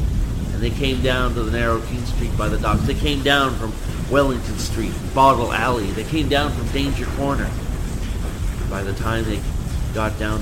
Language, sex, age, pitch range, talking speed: English, male, 40-59, 105-135 Hz, 185 wpm